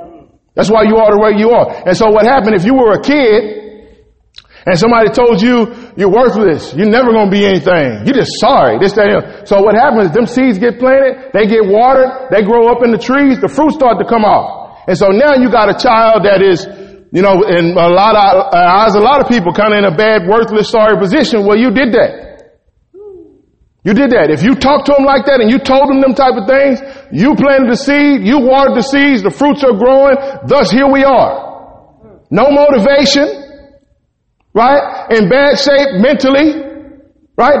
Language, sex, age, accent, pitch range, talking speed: English, male, 40-59, American, 215-275 Hz, 210 wpm